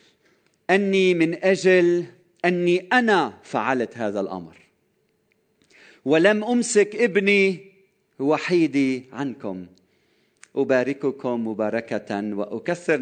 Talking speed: 75 wpm